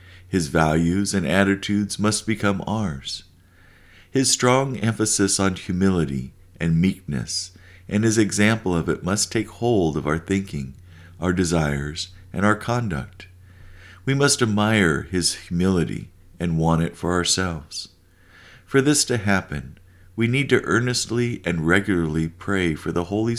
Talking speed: 140 wpm